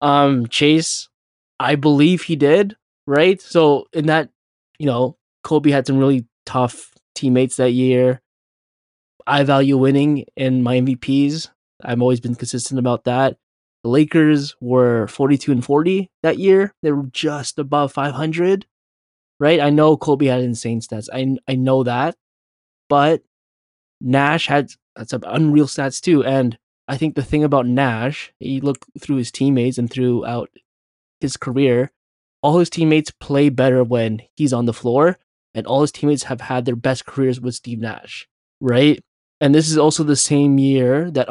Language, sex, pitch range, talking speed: English, male, 125-145 Hz, 160 wpm